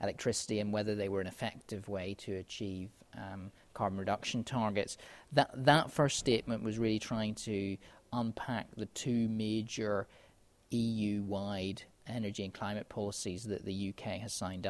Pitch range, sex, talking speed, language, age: 100-115 Hz, male, 145 wpm, English, 30-49